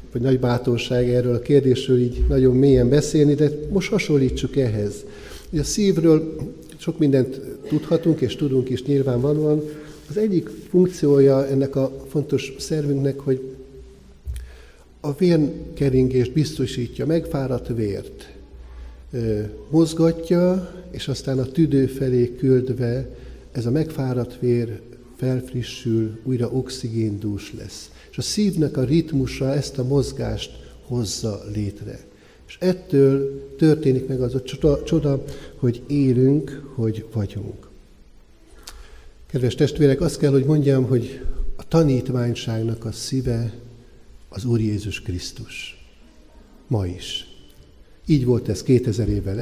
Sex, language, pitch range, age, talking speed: male, Hungarian, 110-145 Hz, 60-79, 115 wpm